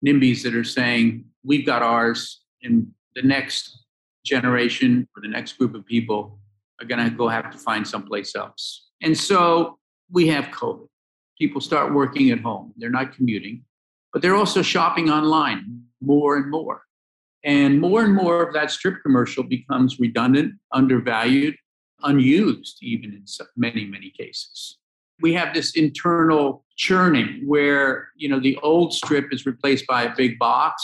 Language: English